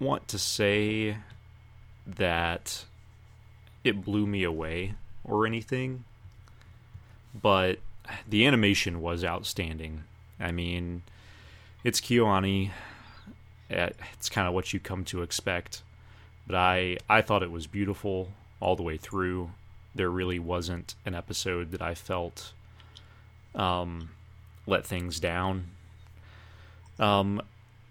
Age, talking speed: 30-49, 110 wpm